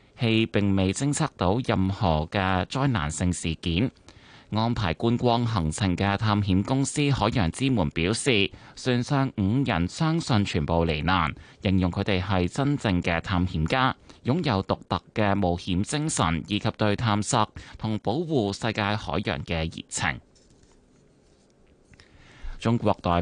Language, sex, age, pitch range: Chinese, male, 20-39, 95-120 Hz